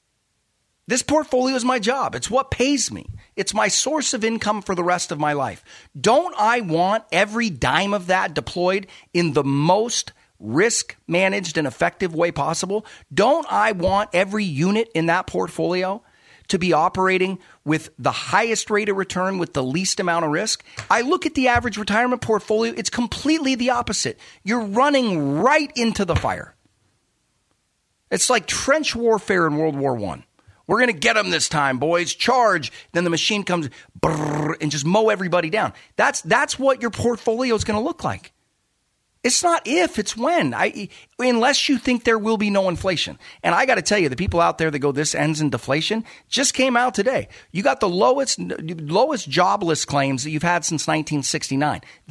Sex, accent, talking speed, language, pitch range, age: male, American, 185 wpm, English, 160-235 Hz, 40-59